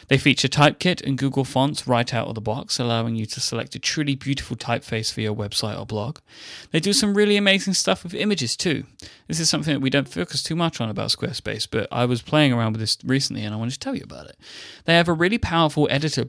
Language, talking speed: English, 245 wpm